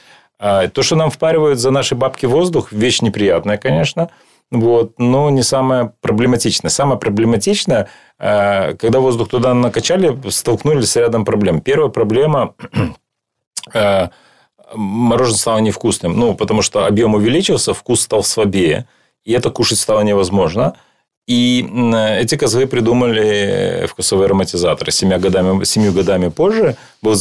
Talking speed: 125 wpm